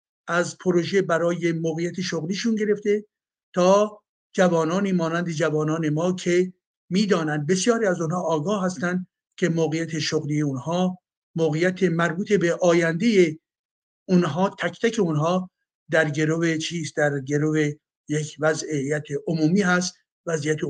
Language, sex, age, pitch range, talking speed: Persian, male, 60-79, 160-205 Hz, 115 wpm